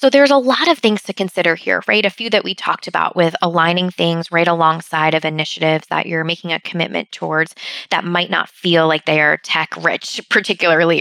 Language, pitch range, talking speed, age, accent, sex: English, 165-185 Hz, 205 wpm, 20-39, American, female